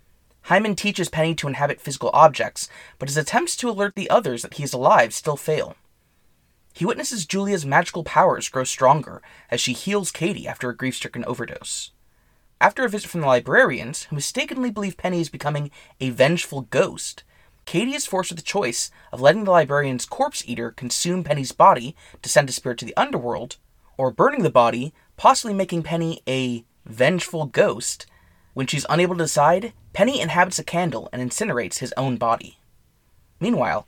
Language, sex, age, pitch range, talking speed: English, male, 20-39, 130-195 Hz, 170 wpm